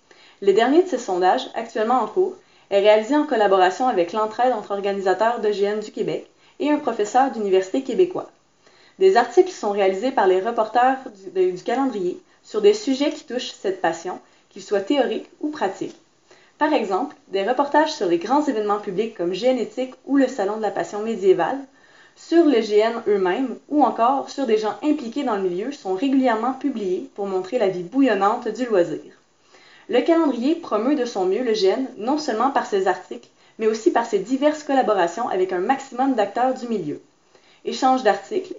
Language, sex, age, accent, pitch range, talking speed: French, female, 20-39, Canadian, 210-295 Hz, 180 wpm